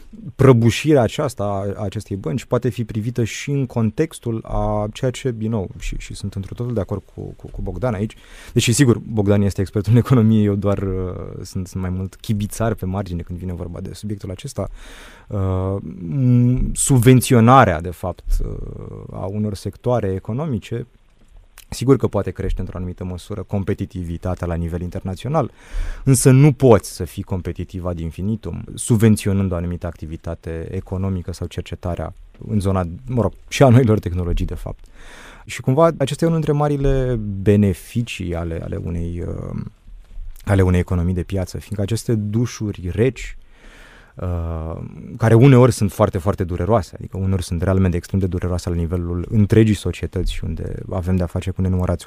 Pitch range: 90-115 Hz